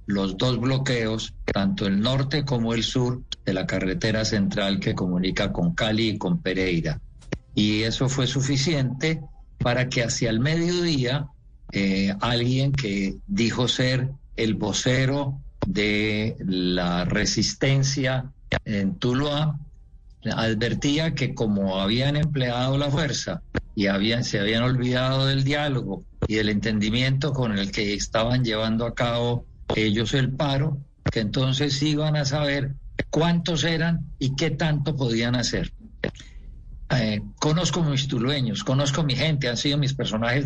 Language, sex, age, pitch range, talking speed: Spanish, male, 50-69, 110-145 Hz, 140 wpm